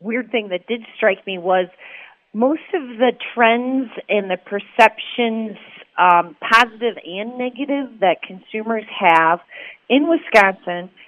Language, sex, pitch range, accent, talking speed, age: English, female, 175-235 Hz, American, 125 wpm, 40-59